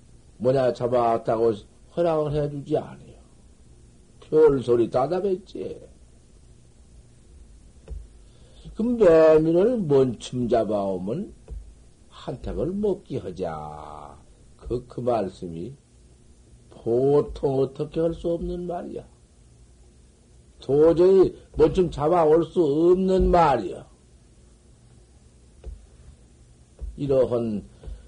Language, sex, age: Korean, male, 60-79